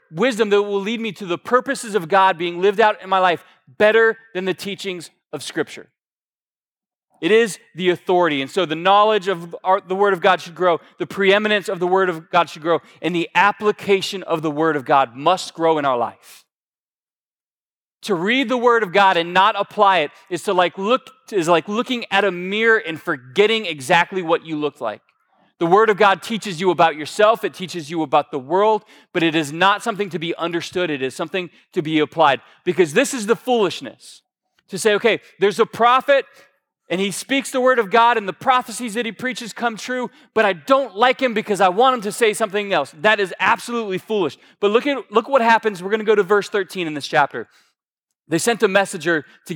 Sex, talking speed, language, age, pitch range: male, 215 wpm, English, 30-49, 175-225 Hz